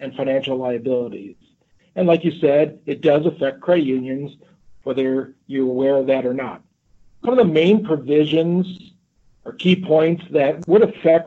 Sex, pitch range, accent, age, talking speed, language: male, 135-165 Hz, American, 50-69, 160 wpm, English